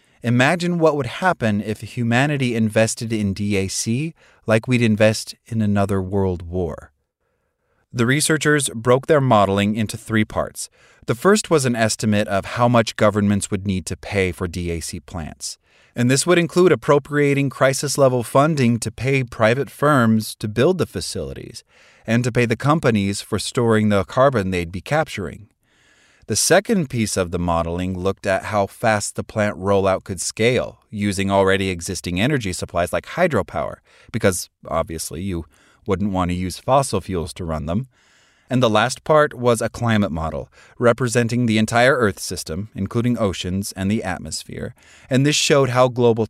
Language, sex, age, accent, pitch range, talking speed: English, male, 30-49, American, 95-120 Hz, 160 wpm